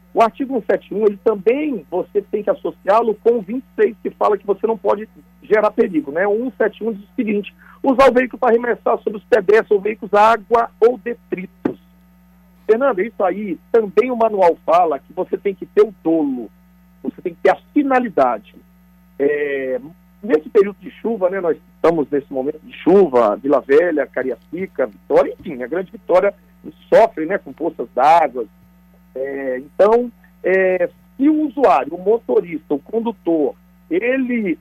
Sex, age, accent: male, 50-69, Brazilian